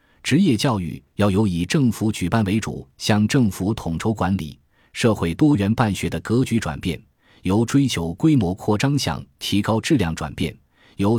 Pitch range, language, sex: 90-115 Hz, Chinese, male